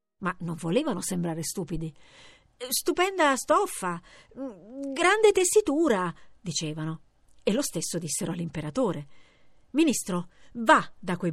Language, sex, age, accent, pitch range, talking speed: Italian, female, 50-69, native, 165-270 Hz, 100 wpm